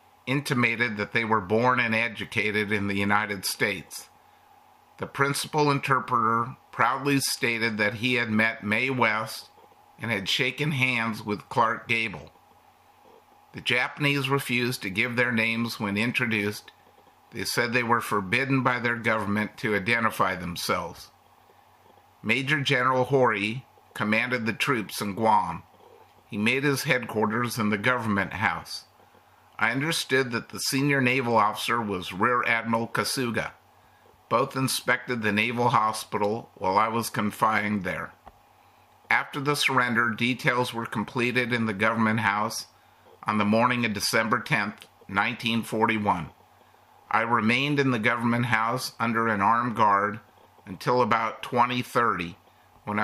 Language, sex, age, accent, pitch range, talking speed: English, male, 50-69, American, 105-130 Hz, 130 wpm